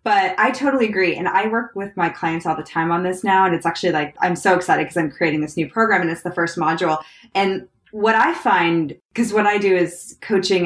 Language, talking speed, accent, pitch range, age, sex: English, 250 wpm, American, 165-205 Hz, 20-39, female